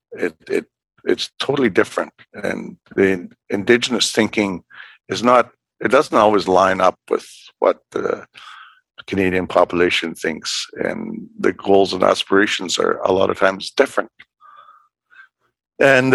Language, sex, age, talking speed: English, male, 60-79, 125 wpm